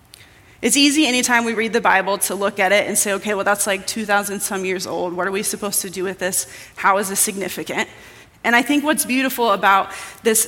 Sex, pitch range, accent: female, 200-245 Hz, American